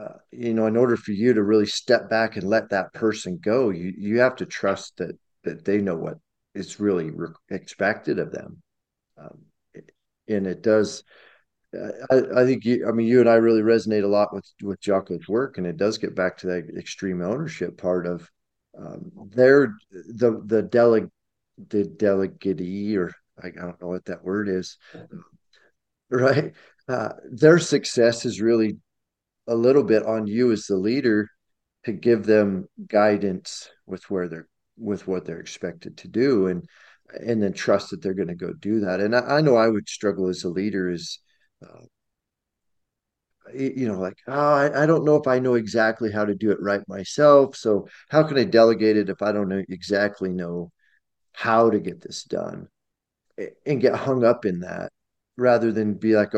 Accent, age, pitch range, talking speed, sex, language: American, 40-59, 95-115 Hz, 190 wpm, male, English